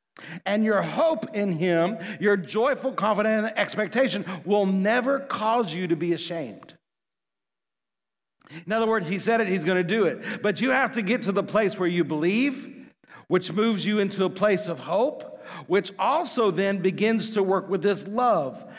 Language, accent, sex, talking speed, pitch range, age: English, American, male, 175 wpm, 180-235 Hz, 50-69